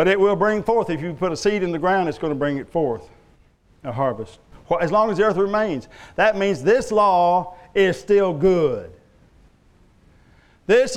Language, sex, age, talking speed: English, male, 50-69, 190 wpm